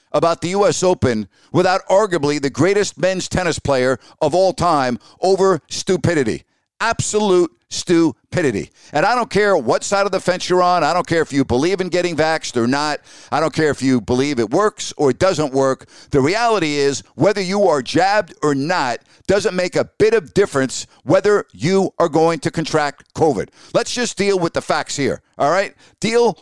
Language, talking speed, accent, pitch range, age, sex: English, 190 wpm, American, 150-200 Hz, 50-69, male